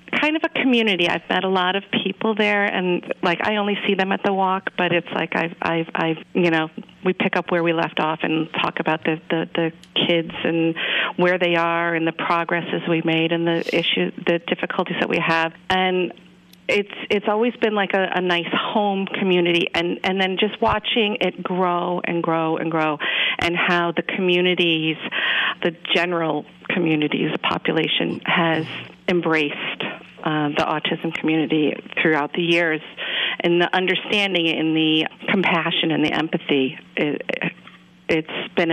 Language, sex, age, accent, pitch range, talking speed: English, female, 40-59, American, 160-190 Hz, 170 wpm